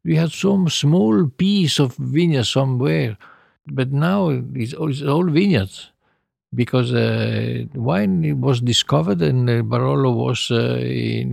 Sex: male